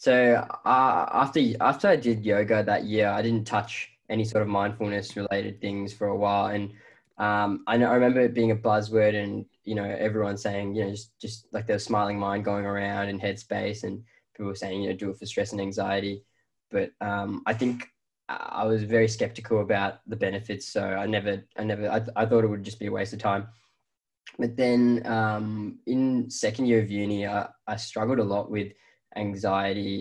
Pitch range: 100-110 Hz